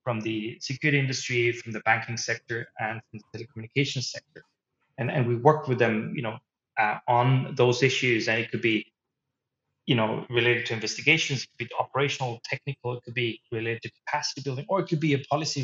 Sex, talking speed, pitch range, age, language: male, 200 wpm, 110-135 Hz, 30-49, English